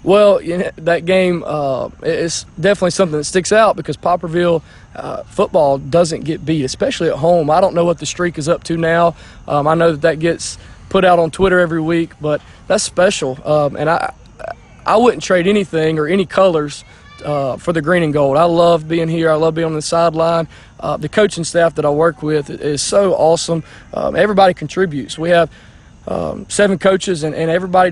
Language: English